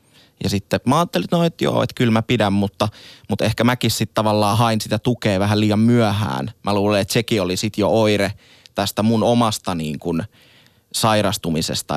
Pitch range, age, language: 100-115 Hz, 20-39, Finnish